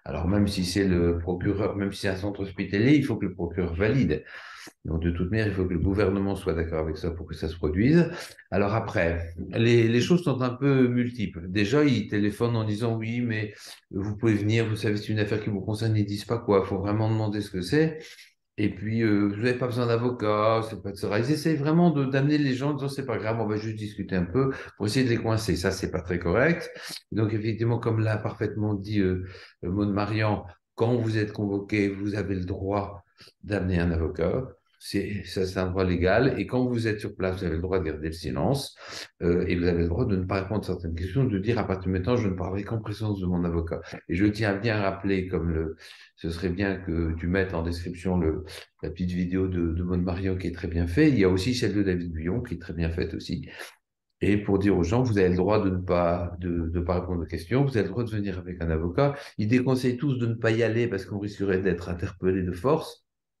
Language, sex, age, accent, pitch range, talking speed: French, male, 50-69, French, 90-110 Hz, 255 wpm